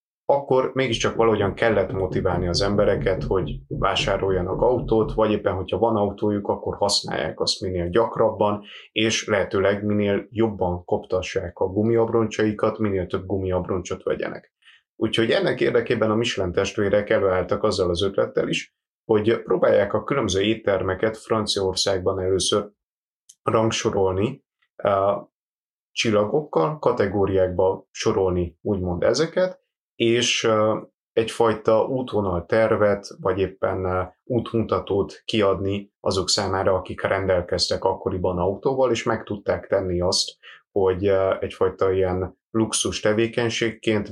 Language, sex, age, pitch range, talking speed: Hungarian, male, 30-49, 95-110 Hz, 105 wpm